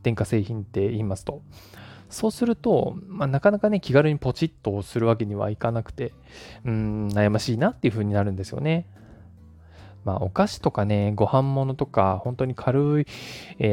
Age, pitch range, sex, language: 20-39, 105-155 Hz, male, Japanese